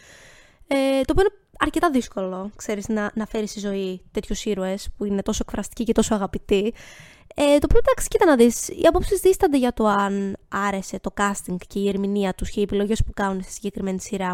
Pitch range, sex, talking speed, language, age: 200-275 Hz, female, 195 wpm, Greek, 20-39